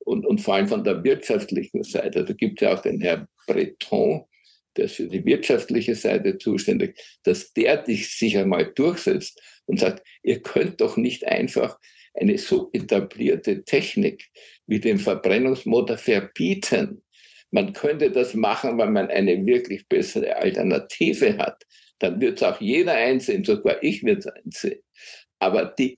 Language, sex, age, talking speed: German, male, 60-79, 155 wpm